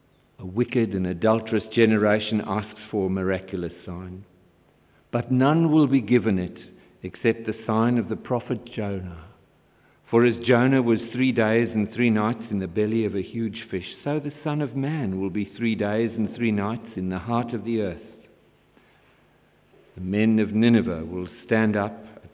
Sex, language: male, English